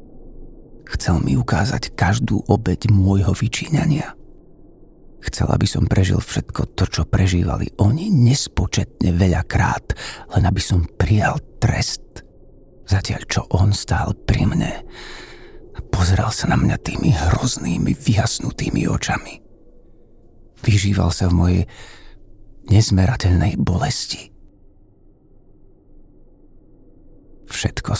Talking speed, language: 100 wpm, Slovak